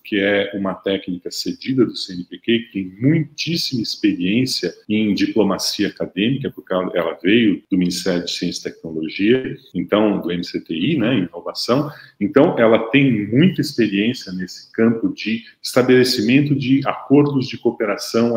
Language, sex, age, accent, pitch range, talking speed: Portuguese, male, 40-59, Brazilian, 105-145 Hz, 135 wpm